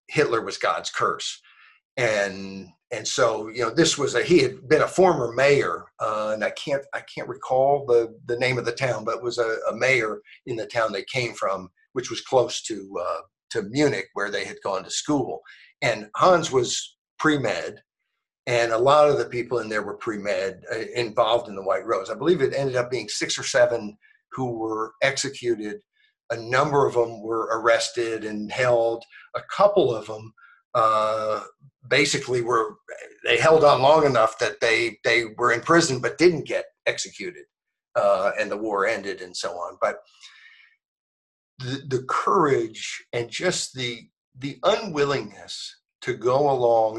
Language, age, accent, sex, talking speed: English, 50-69, American, male, 175 wpm